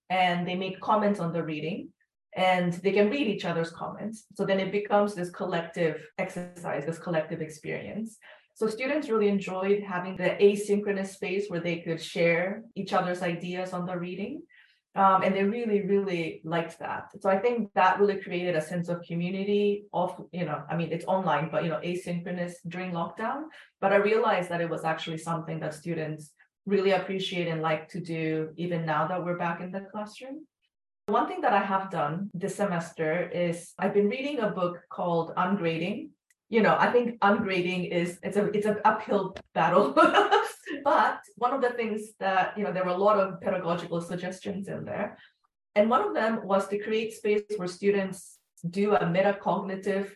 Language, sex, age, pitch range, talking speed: English, female, 20-39, 175-205 Hz, 185 wpm